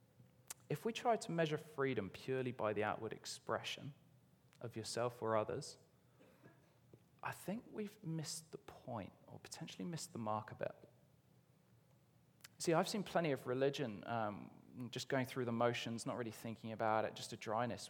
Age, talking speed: 20-39, 160 wpm